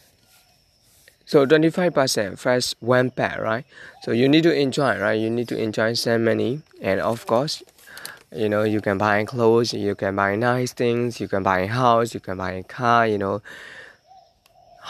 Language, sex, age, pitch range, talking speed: English, male, 20-39, 110-140 Hz, 175 wpm